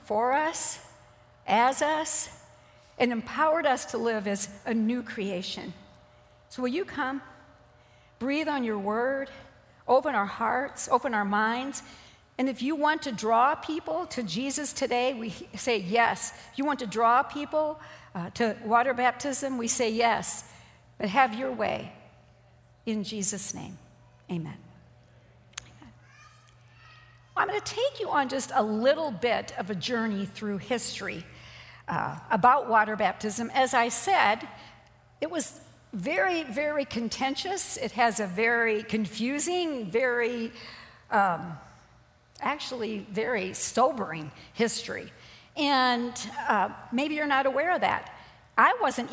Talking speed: 135 wpm